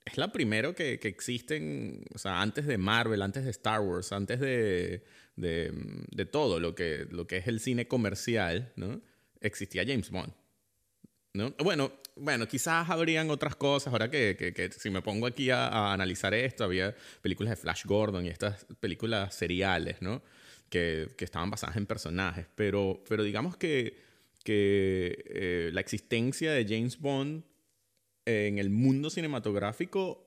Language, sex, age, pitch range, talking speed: Spanish, male, 30-49, 100-135 Hz, 165 wpm